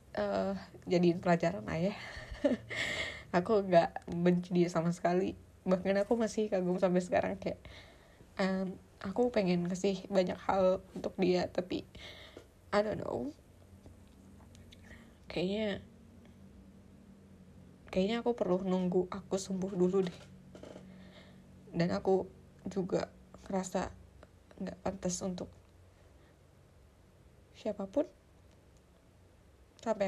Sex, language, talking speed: female, Indonesian, 95 wpm